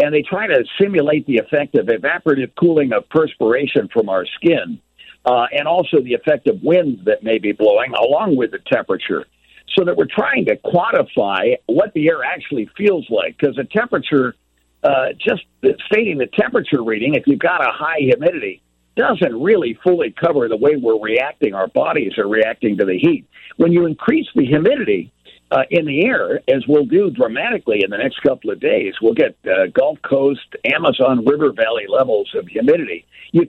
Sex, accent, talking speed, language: male, American, 185 wpm, English